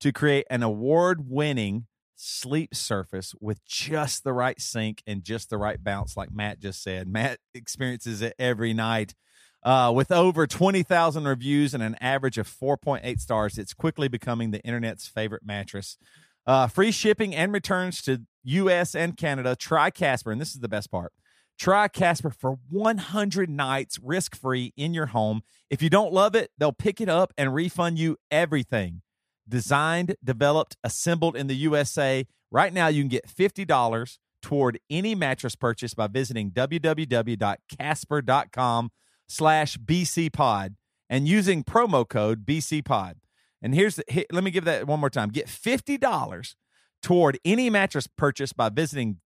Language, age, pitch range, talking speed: English, 40-59, 115-165 Hz, 150 wpm